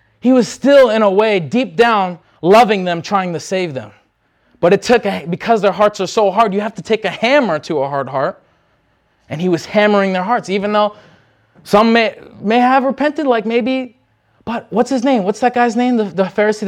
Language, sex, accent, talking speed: English, male, American, 215 wpm